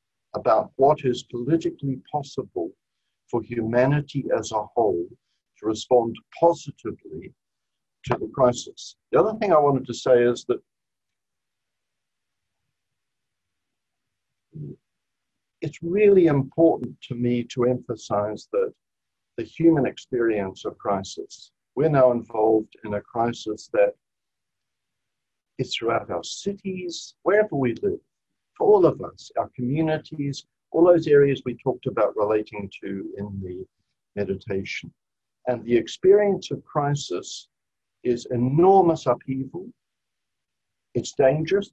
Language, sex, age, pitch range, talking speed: English, male, 60-79, 120-160 Hz, 110 wpm